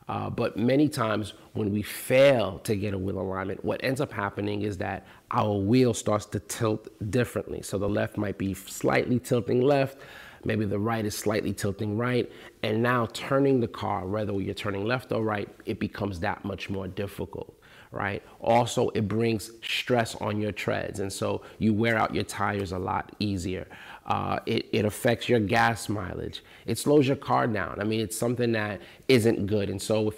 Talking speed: 190 wpm